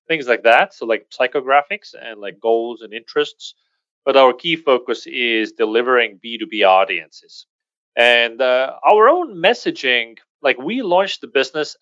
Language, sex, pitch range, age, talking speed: English, male, 115-160 Hz, 30-49, 145 wpm